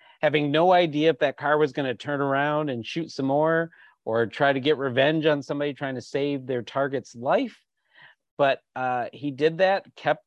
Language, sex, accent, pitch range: English, male, American, 130-155 Hz